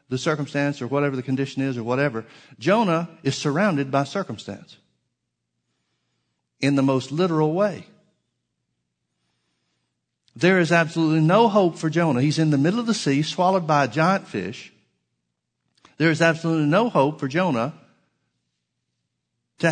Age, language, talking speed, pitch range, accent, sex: 60-79, English, 140 wpm, 105-155 Hz, American, male